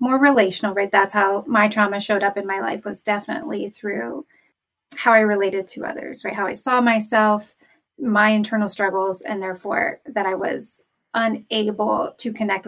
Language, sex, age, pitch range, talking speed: English, female, 30-49, 205-240 Hz, 170 wpm